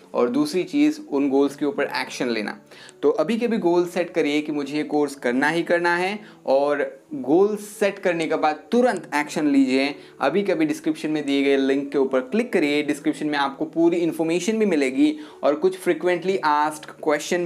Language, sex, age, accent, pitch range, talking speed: Hindi, male, 20-39, native, 145-190 Hz, 190 wpm